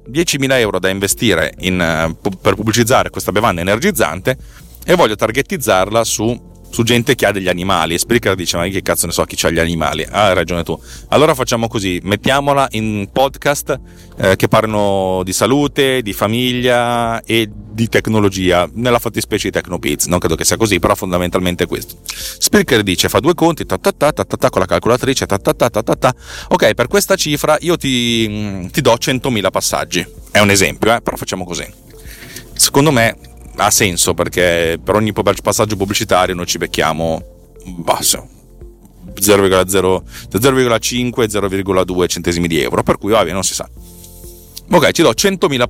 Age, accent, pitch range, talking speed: 30-49, native, 90-120 Hz, 160 wpm